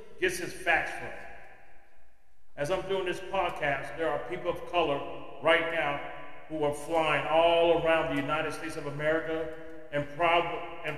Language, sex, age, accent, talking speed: English, male, 40-59, American, 155 wpm